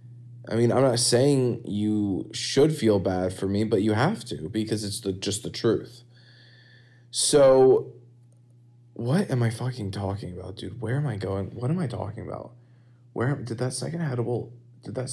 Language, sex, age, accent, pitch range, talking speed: English, male, 20-39, American, 105-125 Hz, 180 wpm